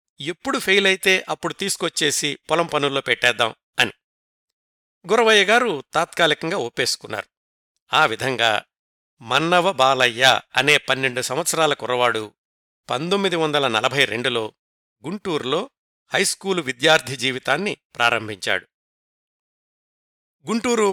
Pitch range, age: 135-185 Hz, 60-79